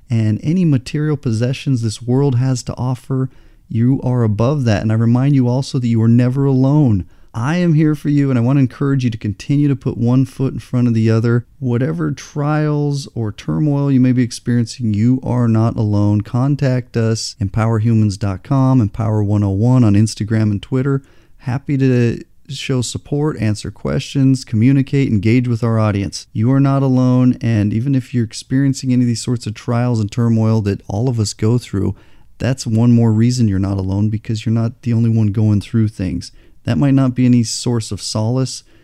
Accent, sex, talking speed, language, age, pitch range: American, male, 190 wpm, English, 40-59, 105-130 Hz